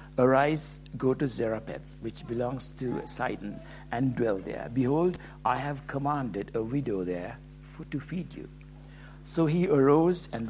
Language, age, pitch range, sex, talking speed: English, 60-79, 120-145 Hz, male, 150 wpm